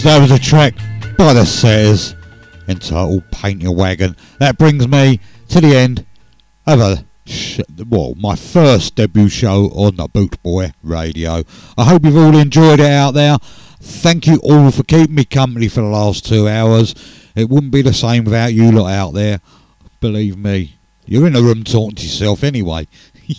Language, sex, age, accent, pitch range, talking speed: English, male, 50-69, British, 95-130 Hz, 175 wpm